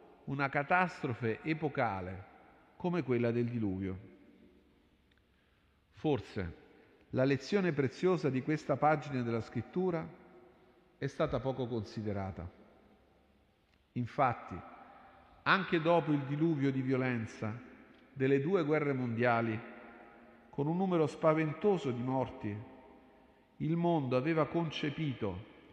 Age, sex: 50-69, male